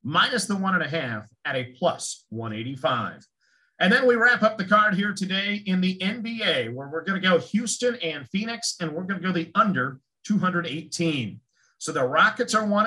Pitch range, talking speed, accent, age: 160-205 Hz, 200 wpm, American, 50-69